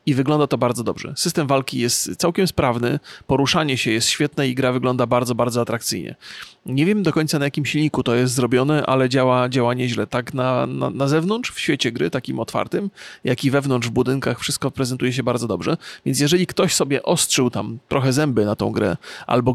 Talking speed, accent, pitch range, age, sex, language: 205 wpm, native, 130-155 Hz, 30-49, male, Polish